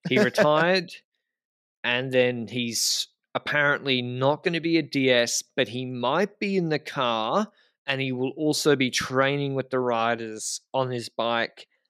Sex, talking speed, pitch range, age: male, 155 wpm, 115-150 Hz, 20-39